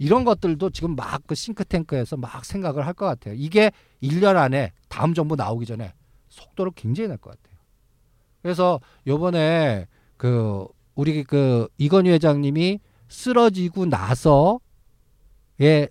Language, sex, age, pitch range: Korean, male, 50-69, 115-195 Hz